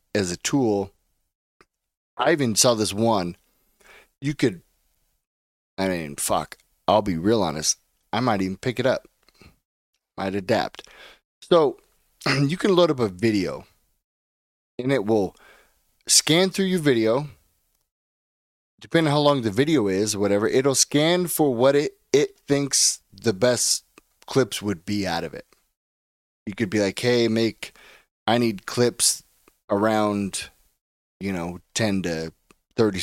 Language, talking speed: English, 140 wpm